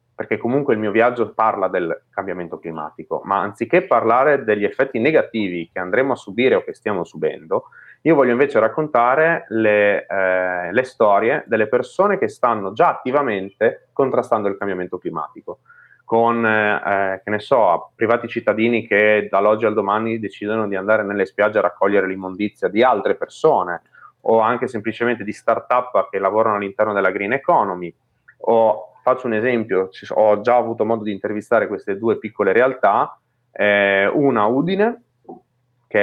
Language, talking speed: Italian, 150 wpm